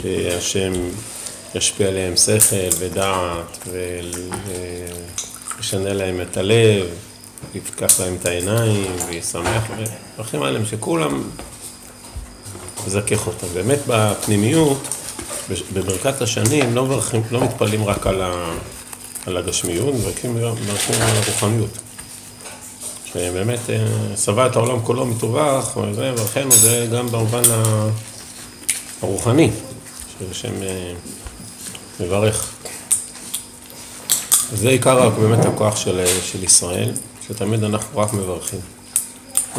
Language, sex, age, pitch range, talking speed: Hebrew, male, 50-69, 95-115 Hz, 90 wpm